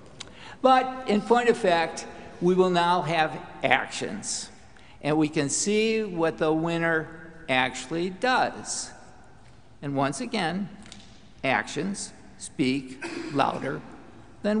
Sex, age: male, 60-79